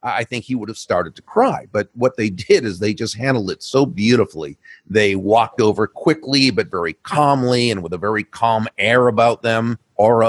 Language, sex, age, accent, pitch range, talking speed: English, male, 40-59, American, 100-130 Hz, 205 wpm